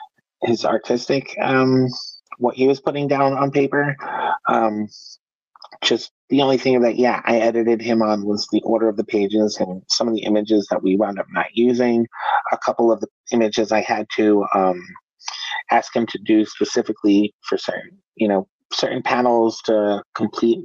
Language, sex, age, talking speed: English, male, 30-49, 175 wpm